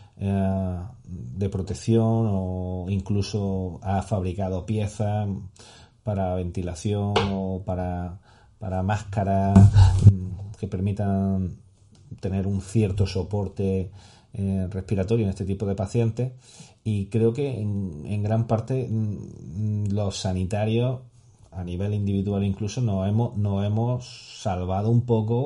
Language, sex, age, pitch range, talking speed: Spanish, male, 30-49, 95-110 Hz, 105 wpm